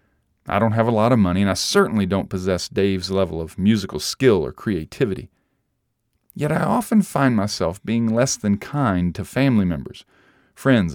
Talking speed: 175 wpm